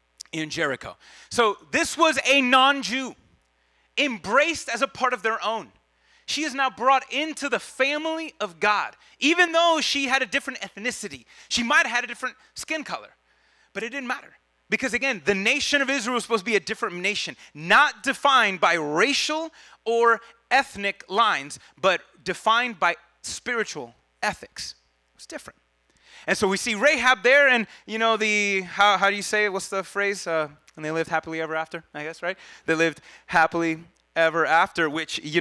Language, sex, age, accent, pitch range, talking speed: English, male, 30-49, American, 150-245 Hz, 180 wpm